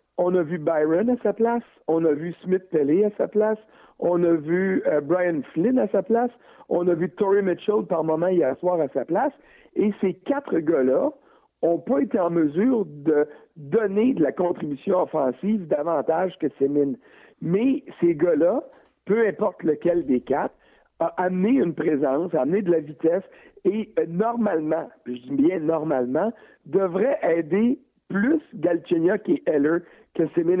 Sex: male